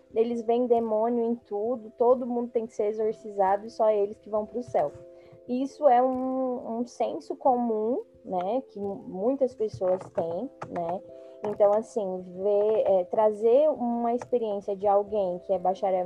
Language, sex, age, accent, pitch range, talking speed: Portuguese, female, 10-29, Brazilian, 190-245 Hz, 155 wpm